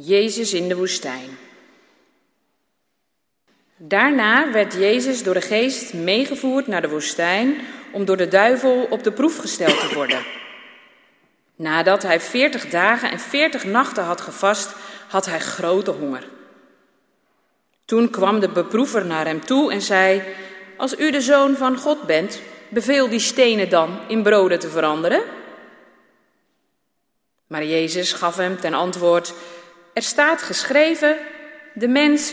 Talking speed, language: 135 wpm, Dutch